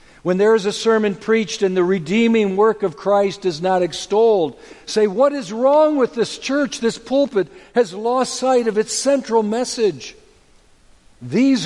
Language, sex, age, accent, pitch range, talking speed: English, male, 60-79, American, 140-225 Hz, 165 wpm